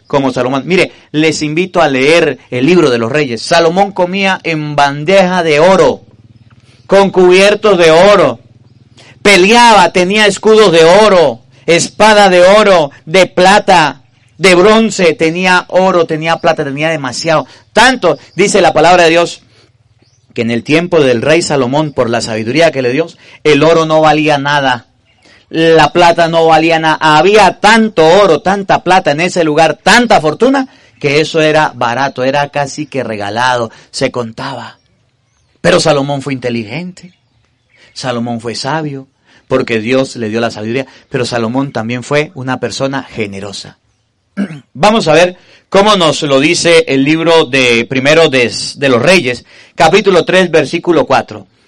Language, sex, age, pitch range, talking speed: Spanish, male, 40-59, 125-175 Hz, 150 wpm